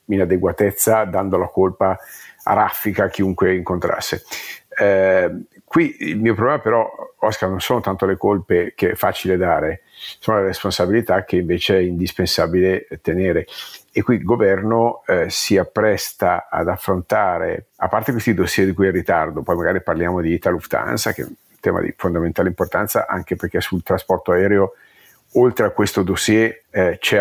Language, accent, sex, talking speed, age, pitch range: Italian, native, male, 165 wpm, 50-69, 90-100 Hz